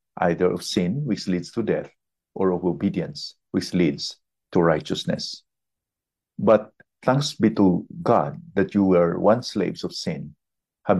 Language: English